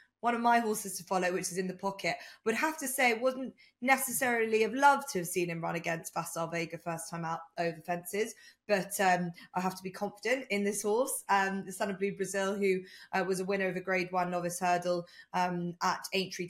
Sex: female